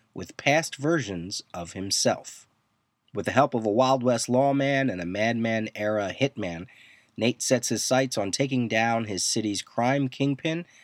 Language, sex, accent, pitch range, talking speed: English, male, American, 105-135 Hz, 155 wpm